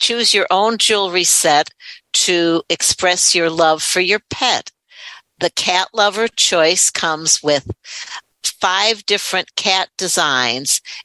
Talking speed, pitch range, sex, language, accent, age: 120 wpm, 155-185 Hz, female, English, American, 60-79